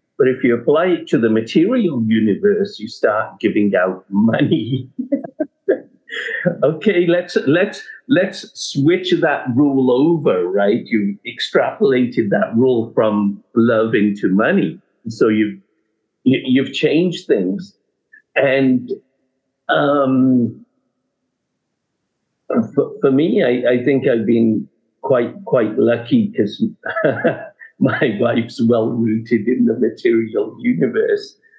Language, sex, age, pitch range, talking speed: English, male, 50-69, 110-175 Hz, 110 wpm